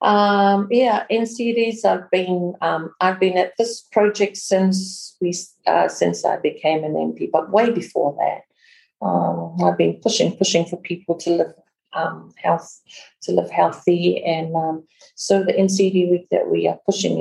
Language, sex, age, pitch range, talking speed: English, female, 50-69, 160-195 Hz, 165 wpm